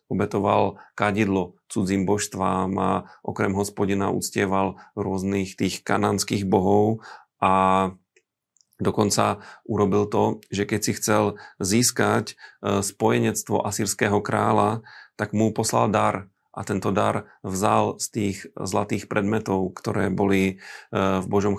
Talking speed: 110 wpm